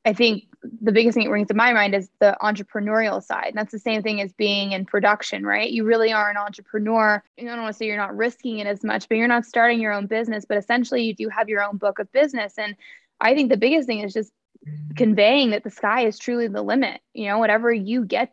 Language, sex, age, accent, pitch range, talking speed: English, female, 20-39, American, 205-245 Hz, 255 wpm